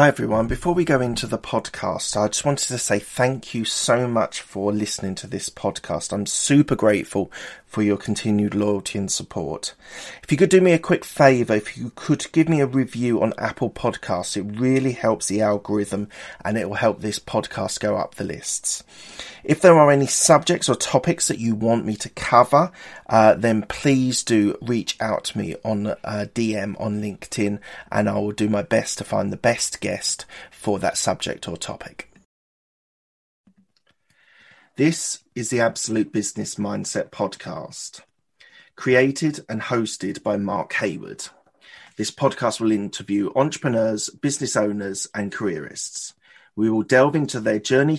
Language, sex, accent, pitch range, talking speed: English, male, British, 105-135 Hz, 170 wpm